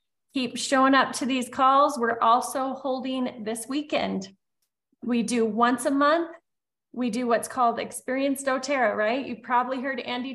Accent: American